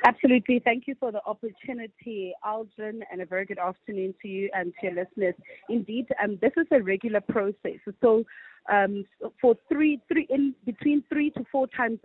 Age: 30-49